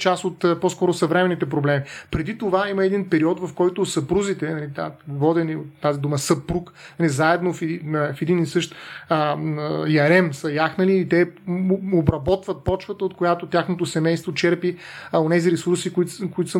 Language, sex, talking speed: Bulgarian, male, 160 wpm